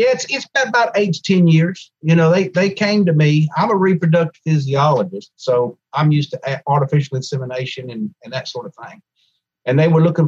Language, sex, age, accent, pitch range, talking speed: English, male, 50-69, American, 135-165 Hz, 200 wpm